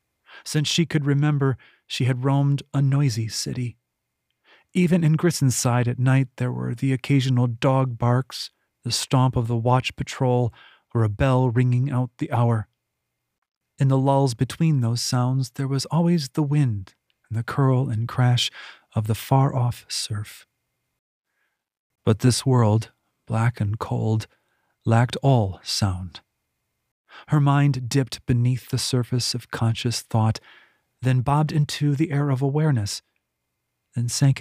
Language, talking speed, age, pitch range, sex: English, 140 wpm, 40-59, 115-140 Hz, male